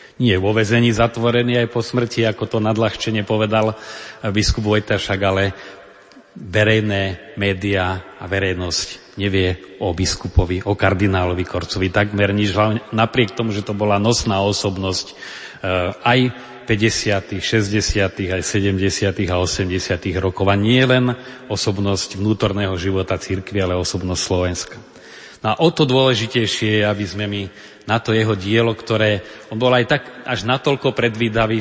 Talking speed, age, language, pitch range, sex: 140 wpm, 40-59, Slovak, 100-115 Hz, male